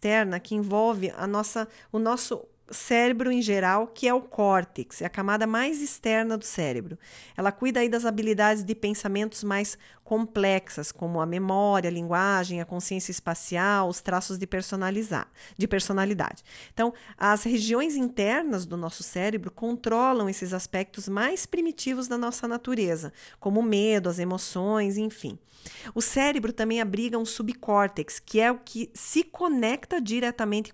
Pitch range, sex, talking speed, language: 190-235 Hz, female, 150 wpm, Portuguese